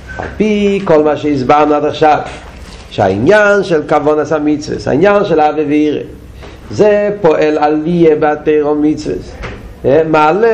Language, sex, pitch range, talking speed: Hebrew, male, 145-165 Hz, 130 wpm